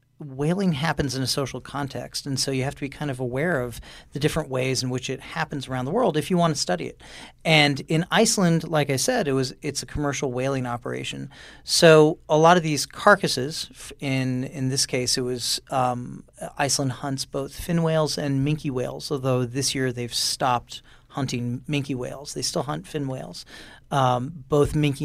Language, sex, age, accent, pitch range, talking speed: English, male, 40-59, American, 130-160 Hz, 190 wpm